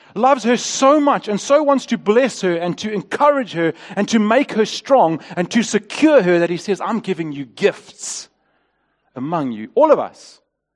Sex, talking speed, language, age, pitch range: male, 195 wpm, English, 40-59, 175-235 Hz